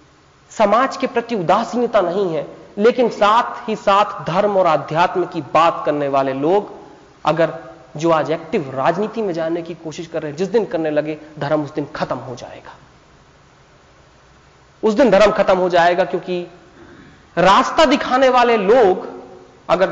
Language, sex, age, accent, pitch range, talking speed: Hindi, male, 30-49, native, 165-245 Hz, 155 wpm